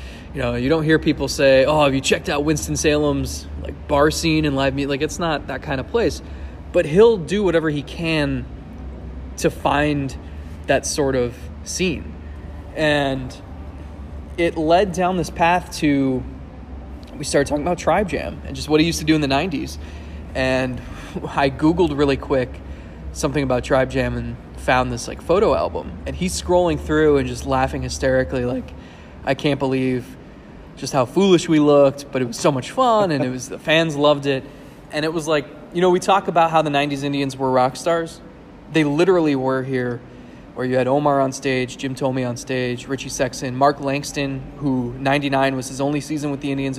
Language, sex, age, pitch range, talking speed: English, male, 20-39, 125-150 Hz, 190 wpm